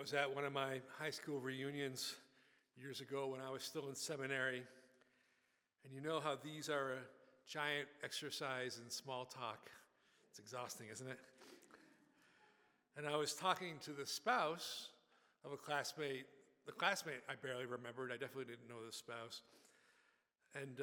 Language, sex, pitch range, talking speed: English, male, 130-155 Hz, 160 wpm